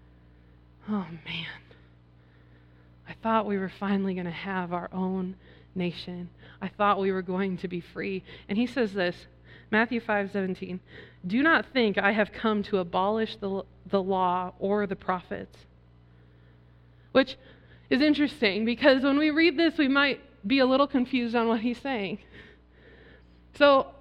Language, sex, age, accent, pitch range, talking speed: English, female, 20-39, American, 180-255 Hz, 150 wpm